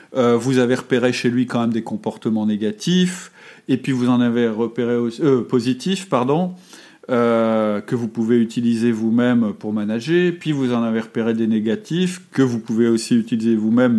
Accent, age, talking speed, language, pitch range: French, 40-59, 175 wpm, French, 115-160 Hz